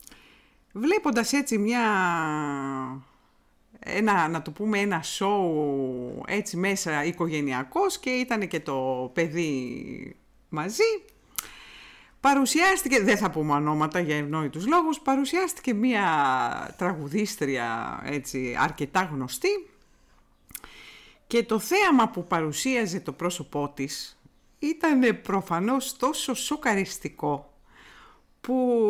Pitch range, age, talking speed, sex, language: 160-255 Hz, 50-69, 90 wpm, female, Greek